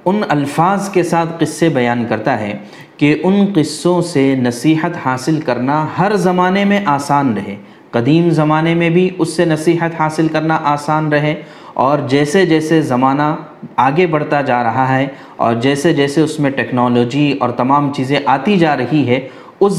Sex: male